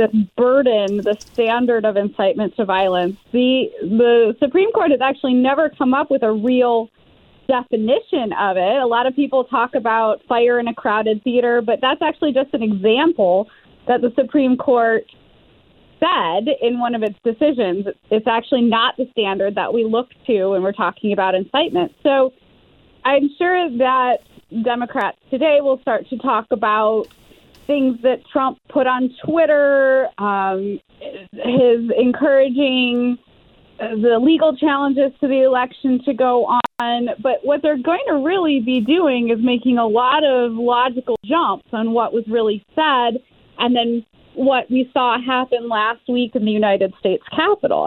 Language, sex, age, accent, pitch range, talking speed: English, female, 20-39, American, 230-275 Hz, 160 wpm